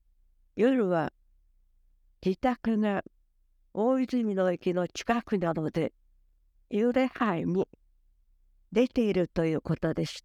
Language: Japanese